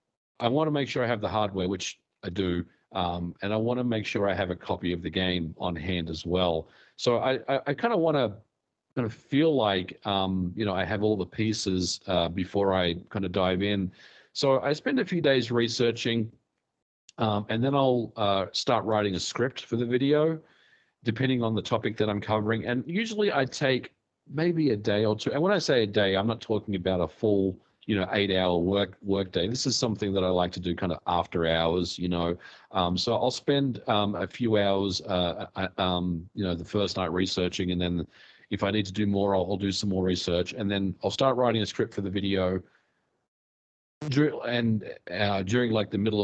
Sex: male